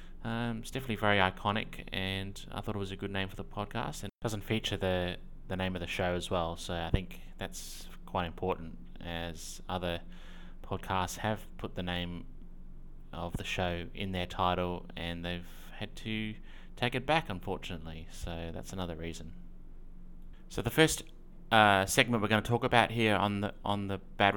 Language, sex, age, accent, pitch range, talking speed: English, male, 20-39, Australian, 95-115 Hz, 180 wpm